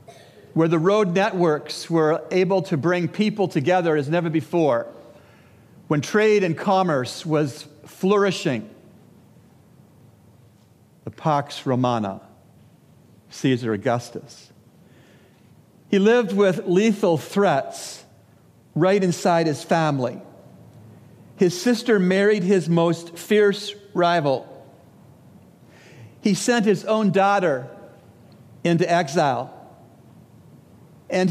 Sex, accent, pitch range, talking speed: male, American, 145-195 Hz, 90 wpm